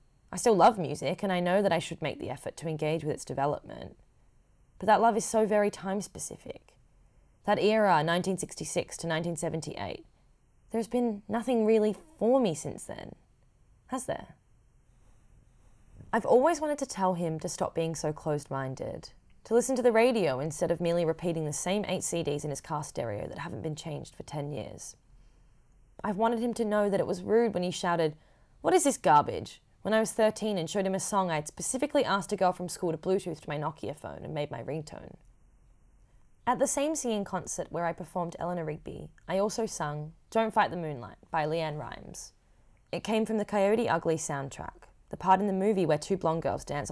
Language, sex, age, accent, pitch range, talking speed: English, female, 20-39, Australian, 150-210 Hz, 200 wpm